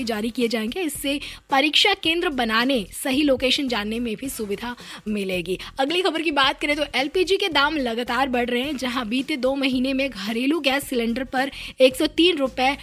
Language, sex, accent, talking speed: Hindi, female, native, 120 wpm